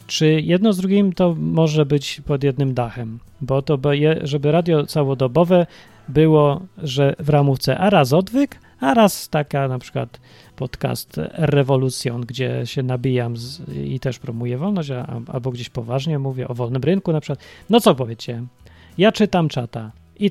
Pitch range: 125-165 Hz